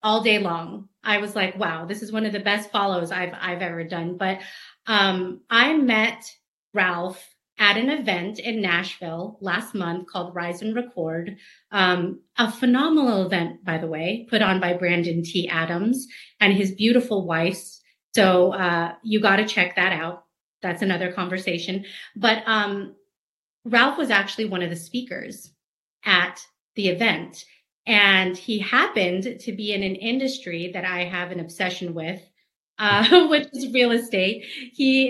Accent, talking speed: American, 160 wpm